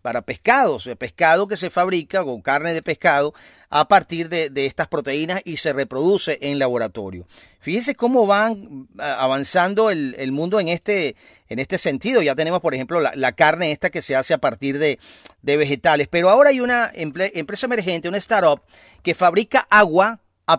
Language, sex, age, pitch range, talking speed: Spanish, male, 40-59, 155-205 Hz, 180 wpm